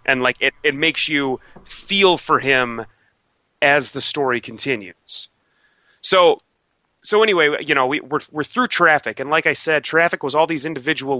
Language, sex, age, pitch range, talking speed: English, male, 30-49, 125-160 Hz, 170 wpm